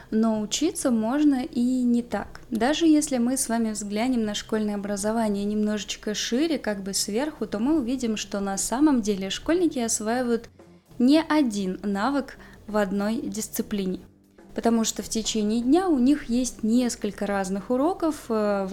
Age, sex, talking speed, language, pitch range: 20-39, female, 150 wpm, Russian, 210-260 Hz